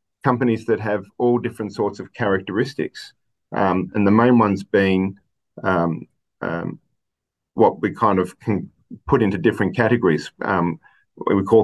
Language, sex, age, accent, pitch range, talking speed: English, male, 40-59, Australian, 90-105 Hz, 145 wpm